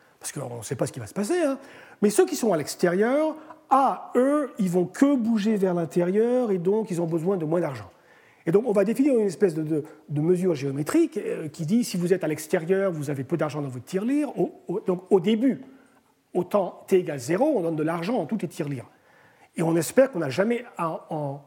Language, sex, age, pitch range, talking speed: French, male, 40-59, 160-250 Hz, 230 wpm